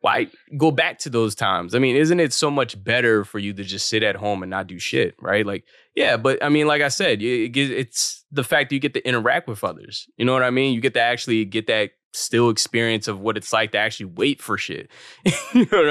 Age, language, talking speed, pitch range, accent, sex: 20-39, English, 255 wpm, 100-125 Hz, American, male